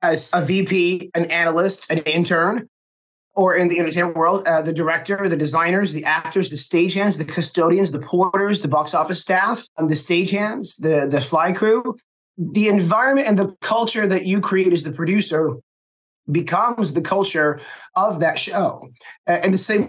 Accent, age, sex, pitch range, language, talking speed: American, 30-49, male, 165-205 Hz, English, 170 wpm